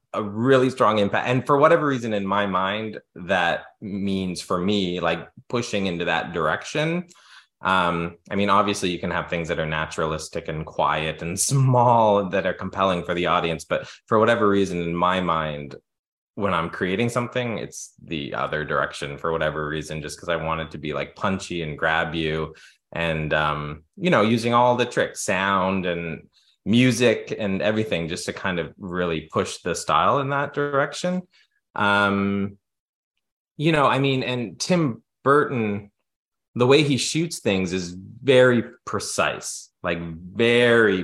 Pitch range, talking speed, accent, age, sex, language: 85-125 Hz, 165 wpm, American, 20-39, male, English